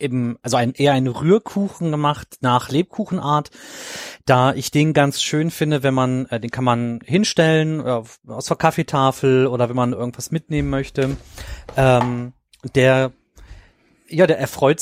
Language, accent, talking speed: German, German, 140 wpm